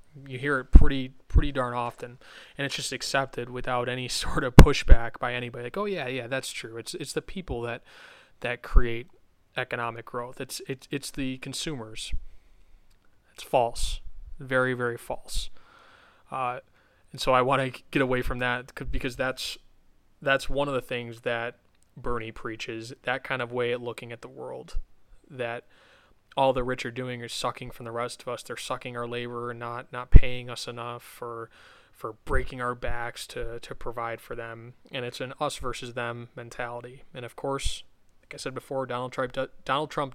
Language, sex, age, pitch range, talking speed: English, male, 20-39, 120-130 Hz, 180 wpm